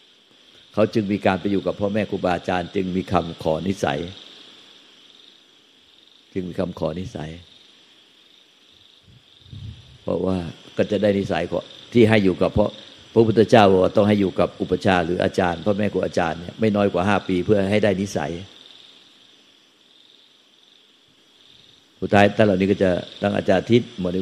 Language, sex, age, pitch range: Thai, male, 60-79, 90-100 Hz